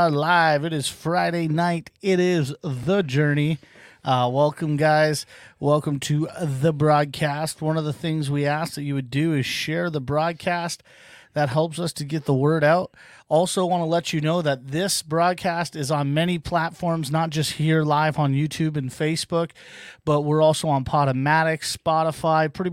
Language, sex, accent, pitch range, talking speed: English, male, American, 145-165 Hz, 175 wpm